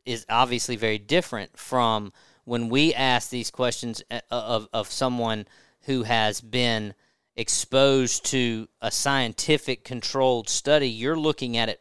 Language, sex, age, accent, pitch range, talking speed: English, male, 40-59, American, 110-135 Hz, 135 wpm